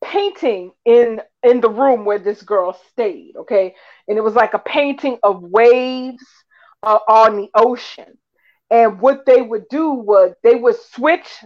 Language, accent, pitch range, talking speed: English, American, 210-260 Hz, 160 wpm